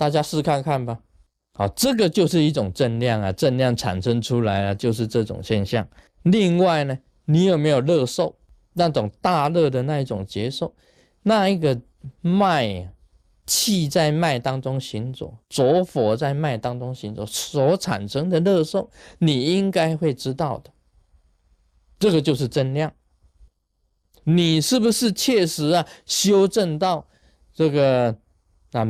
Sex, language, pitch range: male, Chinese, 100-155 Hz